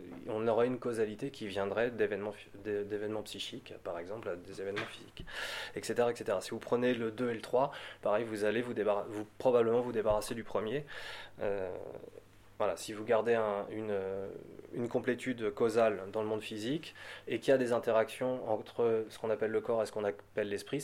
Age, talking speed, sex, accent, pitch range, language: 20-39, 190 wpm, male, French, 105-135 Hz, French